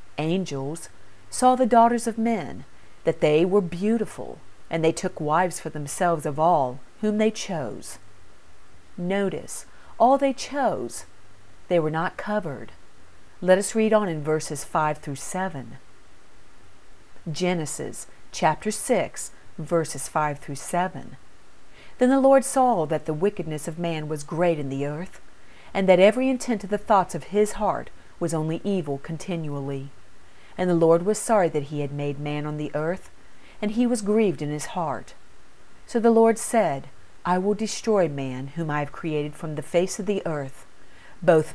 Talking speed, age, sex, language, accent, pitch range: 160 wpm, 40-59, female, English, American, 145-205 Hz